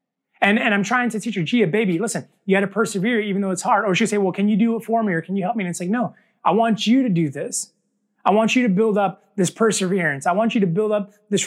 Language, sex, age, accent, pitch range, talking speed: English, male, 20-39, American, 195-230 Hz, 305 wpm